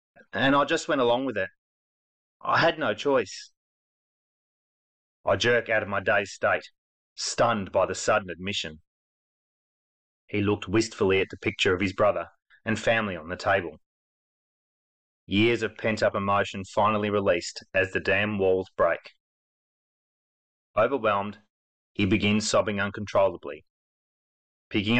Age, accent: 30-49, Australian